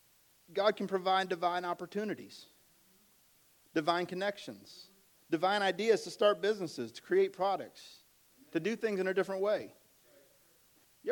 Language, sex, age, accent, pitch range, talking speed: English, male, 40-59, American, 175-215 Hz, 125 wpm